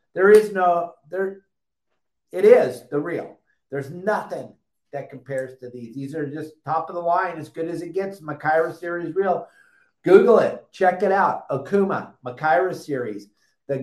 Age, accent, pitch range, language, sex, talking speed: 50-69, American, 140-175 Hz, English, male, 165 wpm